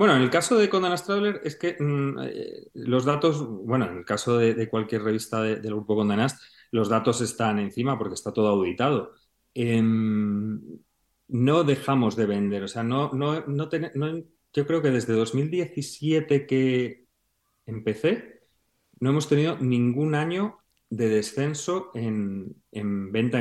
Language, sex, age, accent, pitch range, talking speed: Spanish, male, 40-59, Spanish, 110-135 Hz, 145 wpm